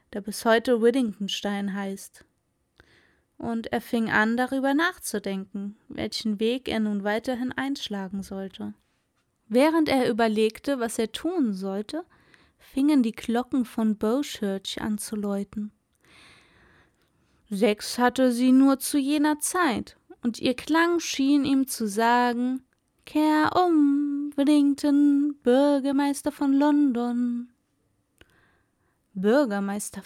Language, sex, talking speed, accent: German, female, 110 wpm, German